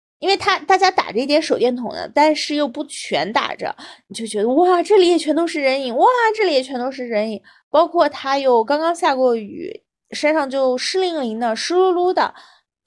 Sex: female